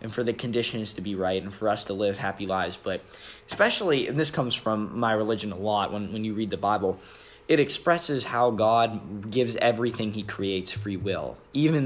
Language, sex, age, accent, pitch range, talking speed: English, male, 20-39, American, 100-125 Hz, 205 wpm